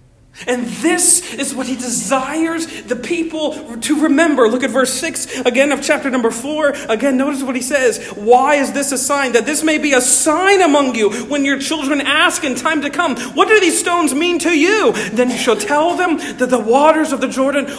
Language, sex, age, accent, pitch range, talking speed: English, male, 40-59, American, 175-290 Hz, 215 wpm